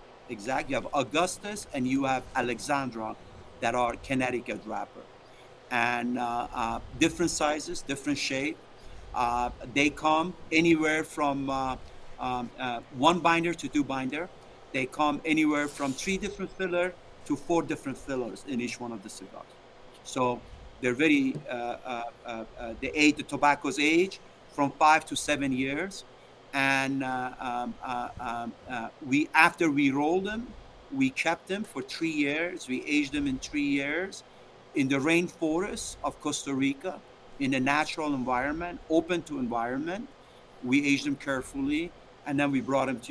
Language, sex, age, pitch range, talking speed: English, male, 50-69, 125-160 Hz, 155 wpm